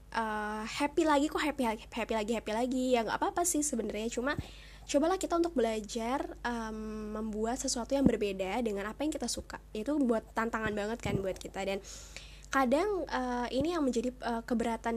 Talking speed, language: 180 wpm, Indonesian